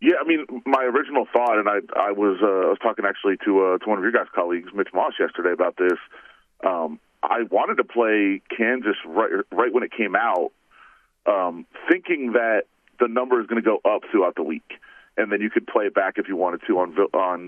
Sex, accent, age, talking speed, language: male, American, 40-59, 225 wpm, English